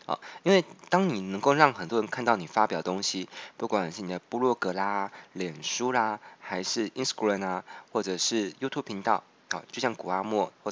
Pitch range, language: 100-130 Hz, Chinese